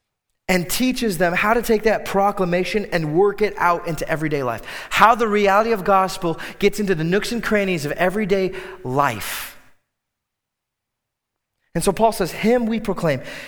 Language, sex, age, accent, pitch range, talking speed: English, male, 30-49, American, 155-220 Hz, 160 wpm